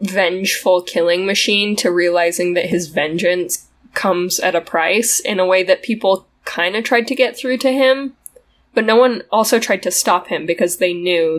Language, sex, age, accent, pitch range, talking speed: English, female, 10-29, American, 175-225 Hz, 190 wpm